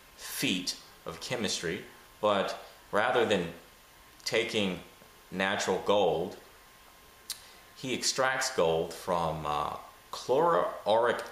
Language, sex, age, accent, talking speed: English, male, 30-49, American, 80 wpm